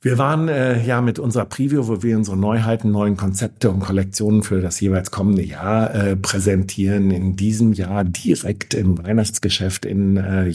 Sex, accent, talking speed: male, German, 170 wpm